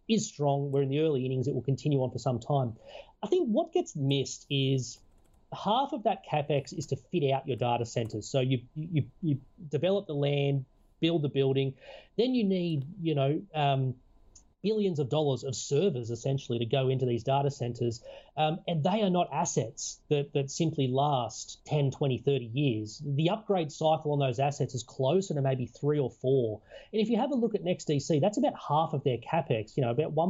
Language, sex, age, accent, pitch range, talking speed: English, male, 30-49, Australian, 135-170 Hz, 205 wpm